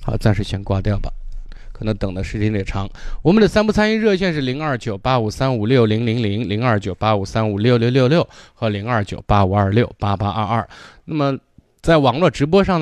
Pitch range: 105-130 Hz